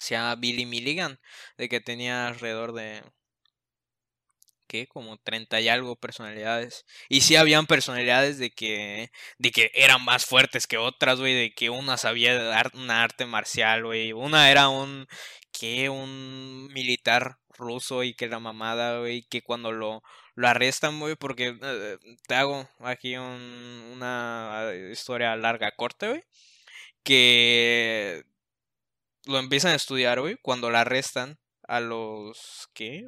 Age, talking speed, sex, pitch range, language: 10-29, 145 wpm, male, 120-140 Hz, Spanish